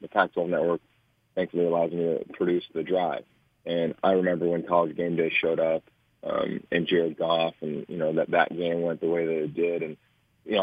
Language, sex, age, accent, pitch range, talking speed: English, male, 30-49, American, 80-105 Hz, 215 wpm